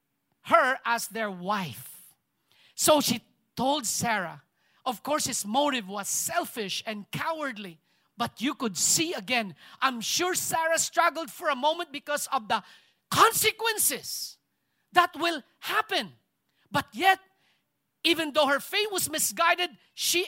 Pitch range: 215-310 Hz